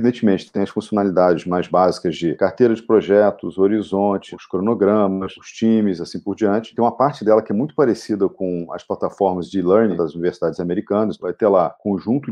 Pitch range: 100-125 Hz